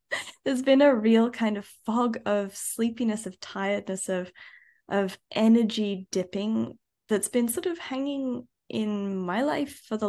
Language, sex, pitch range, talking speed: English, female, 200-255 Hz, 150 wpm